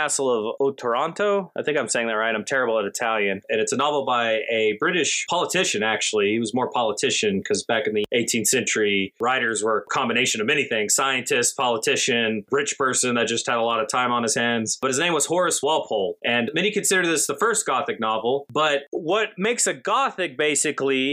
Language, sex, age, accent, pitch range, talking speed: English, male, 20-39, American, 115-145 Hz, 205 wpm